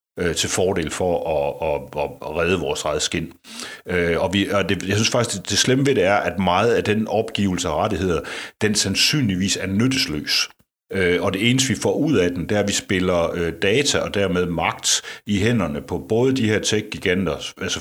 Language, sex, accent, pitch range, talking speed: Danish, male, native, 85-105 Hz, 190 wpm